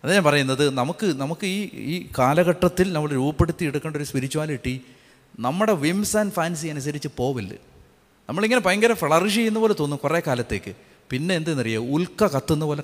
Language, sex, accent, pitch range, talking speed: Malayalam, male, native, 145-210 Hz, 150 wpm